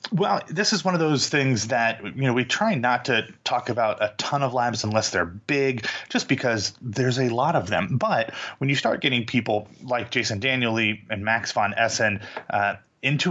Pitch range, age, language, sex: 100-125 Hz, 30-49, English, male